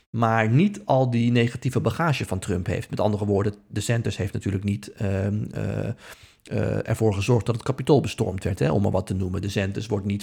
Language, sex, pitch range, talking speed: Dutch, male, 105-125 Hz, 200 wpm